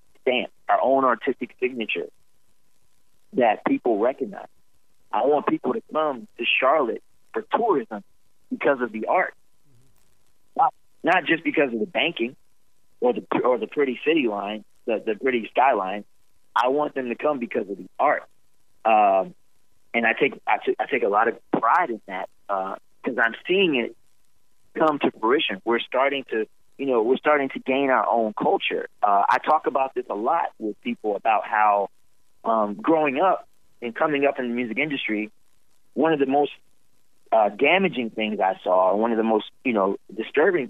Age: 30-49